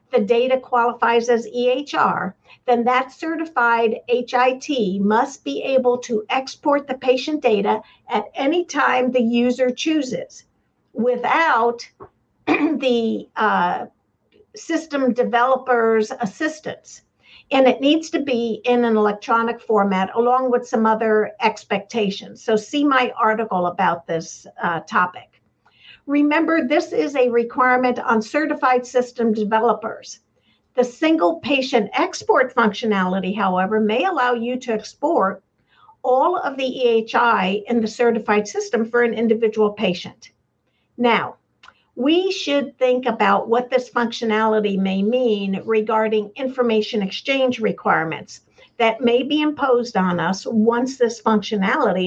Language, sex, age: English, female, 50-69